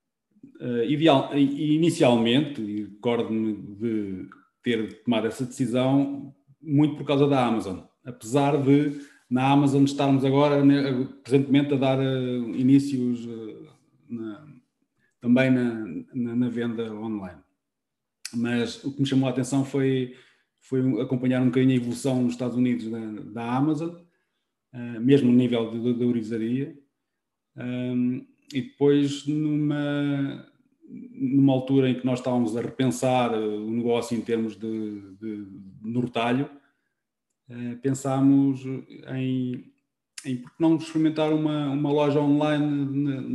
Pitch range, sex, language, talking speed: 120-145 Hz, male, Portuguese, 125 wpm